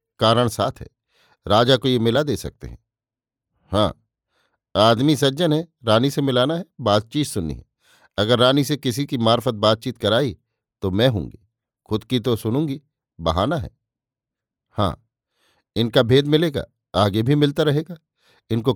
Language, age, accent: Hindi, 50-69, native